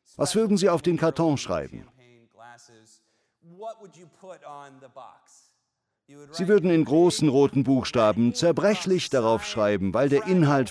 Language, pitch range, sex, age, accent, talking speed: German, 120-175 Hz, male, 50-69, German, 105 wpm